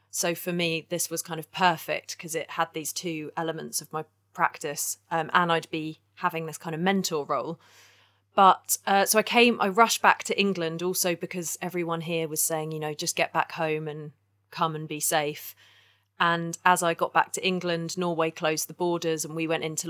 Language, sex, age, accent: English, female, 30-49, British